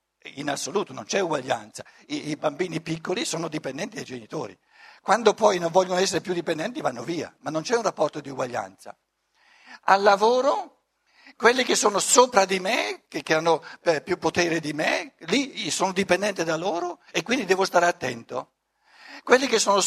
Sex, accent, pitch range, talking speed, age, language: male, native, 170-225 Hz, 175 wpm, 60-79, Italian